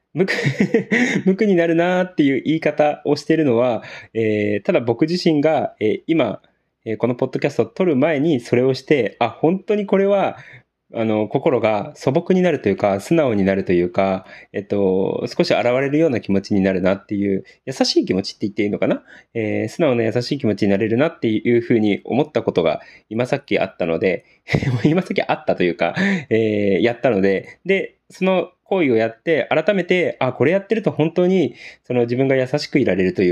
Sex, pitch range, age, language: male, 105-165 Hz, 20-39, Japanese